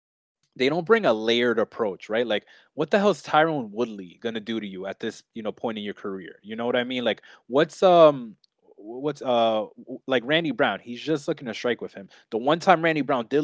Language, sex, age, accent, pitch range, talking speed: English, male, 20-39, American, 110-155 Hz, 235 wpm